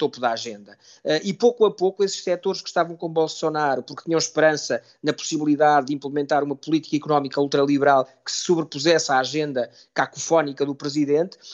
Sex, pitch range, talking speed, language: male, 145-180 Hz, 170 wpm, Portuguese